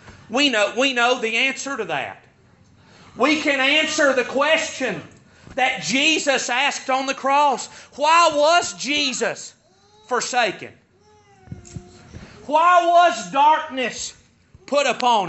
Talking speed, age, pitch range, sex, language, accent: 105 wpm, 40-59, 255-315 Hz, male, English, American